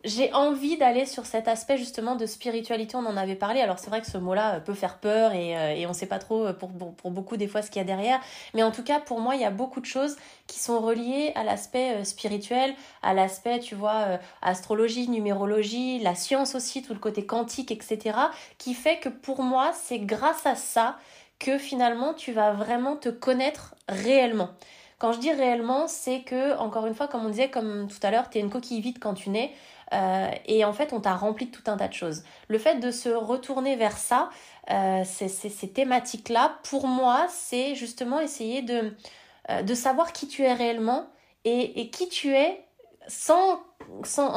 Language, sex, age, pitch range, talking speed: French, female, 20-39, 210-265 Hz, 215 wpm